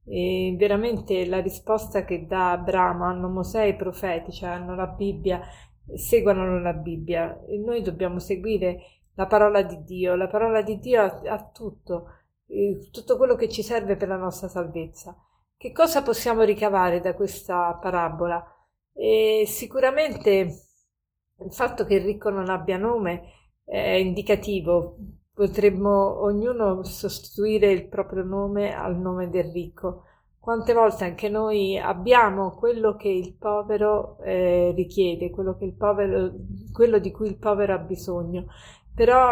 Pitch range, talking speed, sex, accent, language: 180-215 Hz, 145 wpm, female, native, Italian